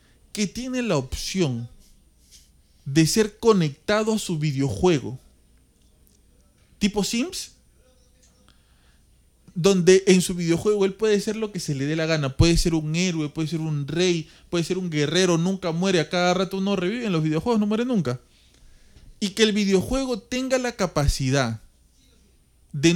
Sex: male